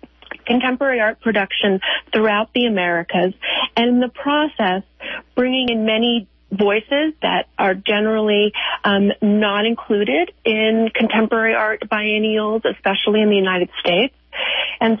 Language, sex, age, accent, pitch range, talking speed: English, female, 40-59, American, 210-255 Hz, 120 wpm